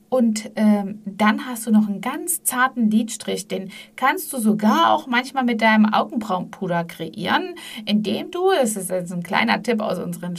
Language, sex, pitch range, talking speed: German, female, 200-245 Hz, 175 wpm